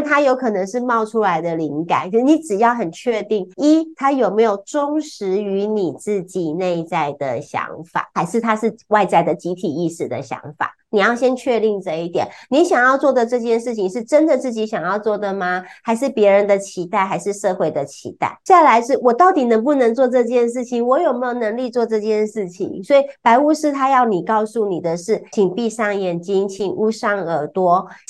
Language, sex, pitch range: Chinese, female, 195-250 Hz